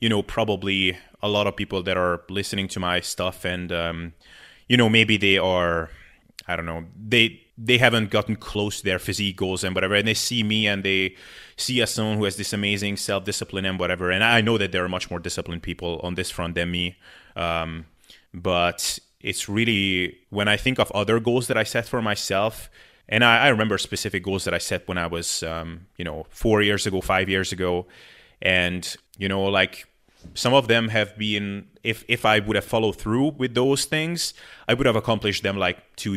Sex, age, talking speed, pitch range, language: male, 20-39, 205 wpm, 90-110 Hz, English